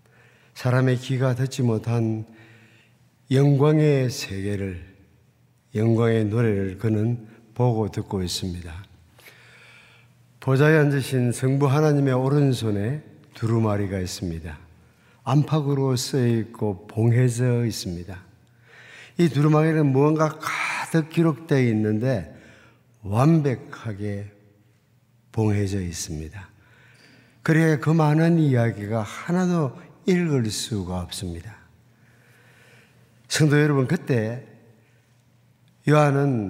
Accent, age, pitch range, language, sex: native, 50-69, 110-135 Hz, Korean, male